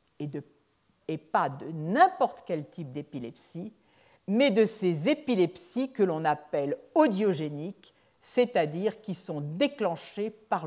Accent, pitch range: French, 165-245 Hz